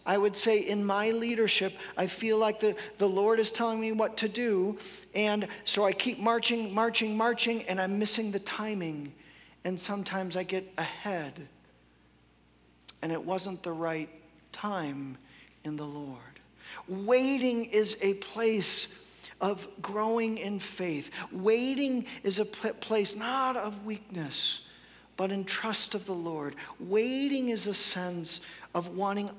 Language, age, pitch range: English, 50-69, 180-225 Hz